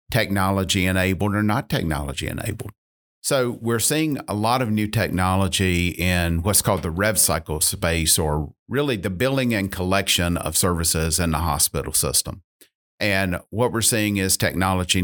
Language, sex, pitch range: English, male, 85-100 Hz